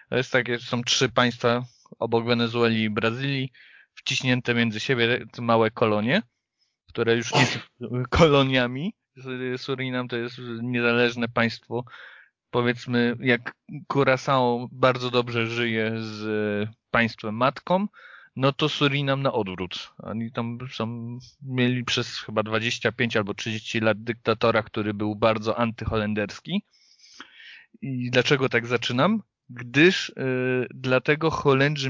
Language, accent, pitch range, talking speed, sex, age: Polish, native, 110-130 Hz, 115 wpm, male, 30-49